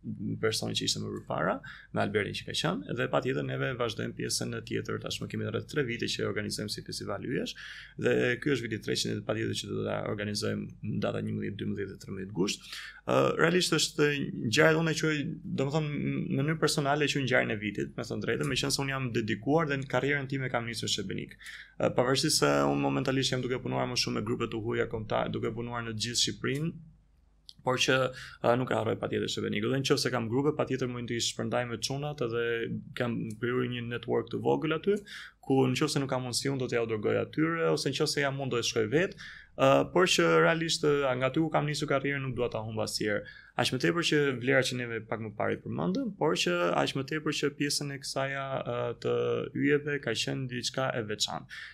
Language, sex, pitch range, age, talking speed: English, male, 115-145 Hz, 20-39, 145 wpm